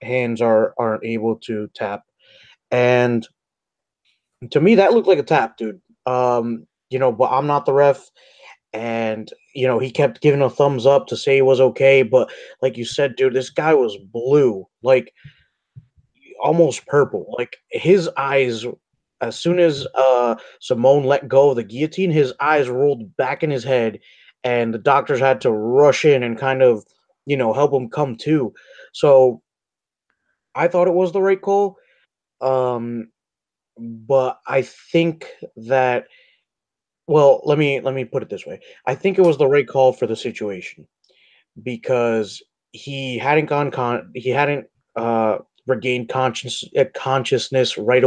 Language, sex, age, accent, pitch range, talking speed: English, male, 20-39, American, 120-145 Hz, 160 wpm